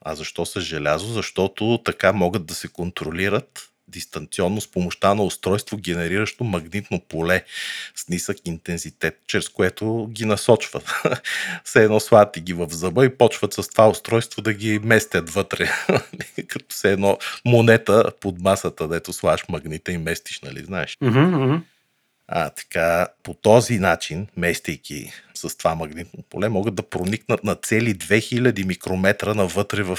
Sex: male